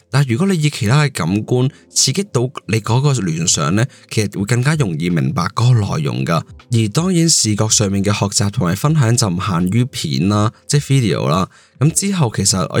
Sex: male